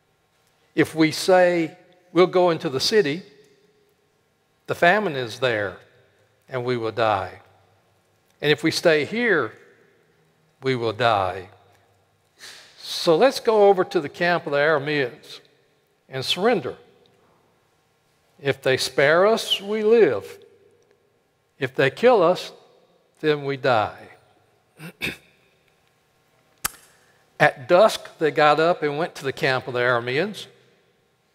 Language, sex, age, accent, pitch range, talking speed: English, male, 60-79, American, 135-185 Hz, 120 wpm